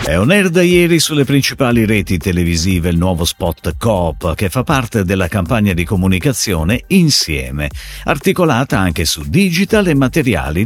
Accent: native